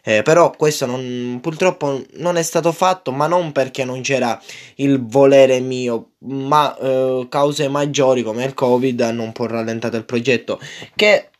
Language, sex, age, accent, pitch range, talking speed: Italian, male, 10-29, native, 115-135 Hz, 165 wpm